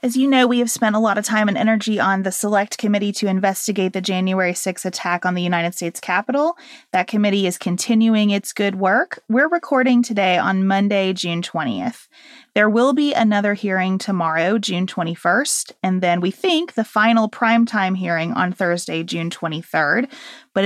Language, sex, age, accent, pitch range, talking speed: English, female, 30-49, American, 185-240 Hz, 180 wpm